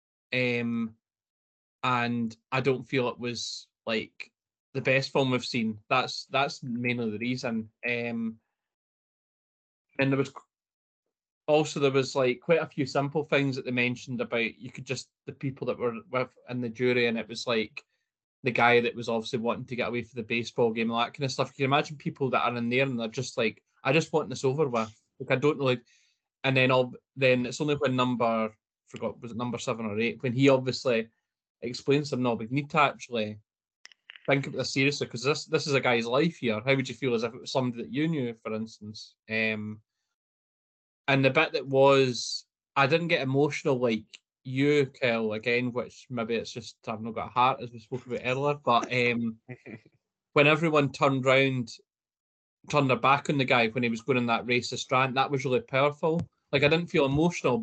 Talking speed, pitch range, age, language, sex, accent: 210 wpm, 115-140 Hz, 20-39, English, male, British